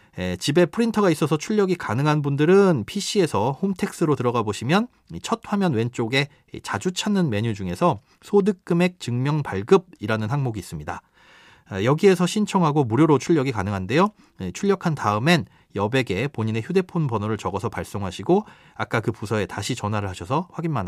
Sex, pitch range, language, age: male, 110-180 Hz, Korean, 30-49